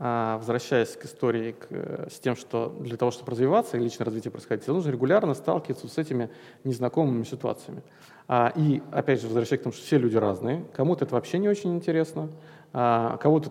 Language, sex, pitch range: Russian, male, 120-150 Hz